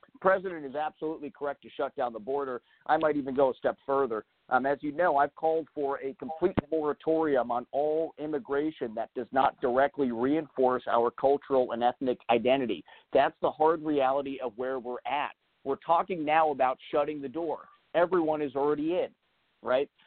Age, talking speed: 50-69, 175 wpm